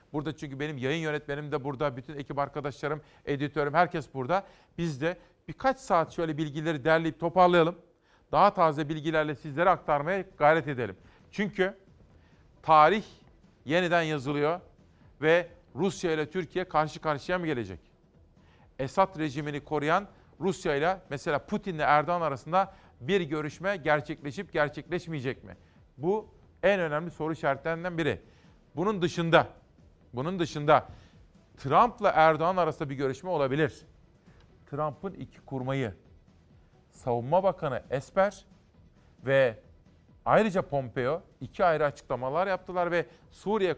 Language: Turkish